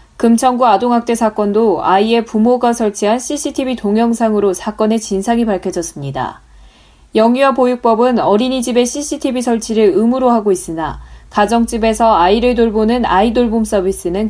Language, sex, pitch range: Korean, female, 200-250 Hz